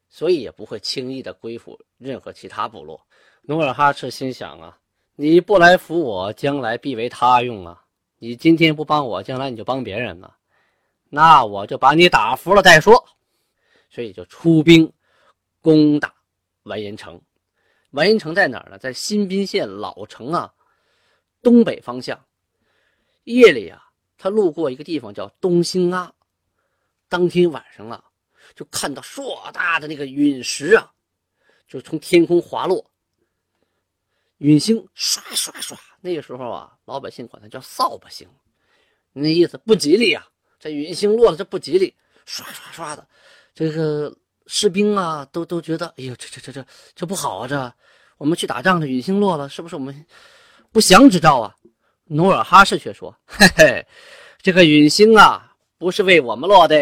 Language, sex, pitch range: Chinese, male, 135-195 Hz